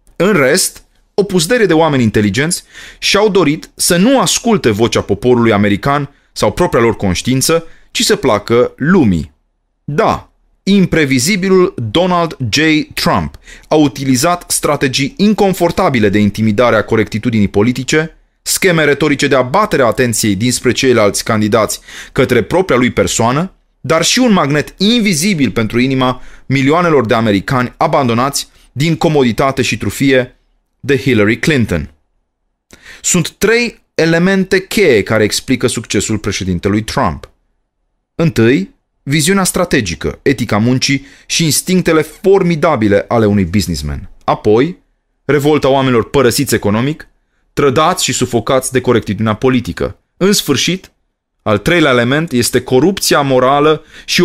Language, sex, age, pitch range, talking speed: Romanian, male, 30-49, 115-165 Hz, 115 wpm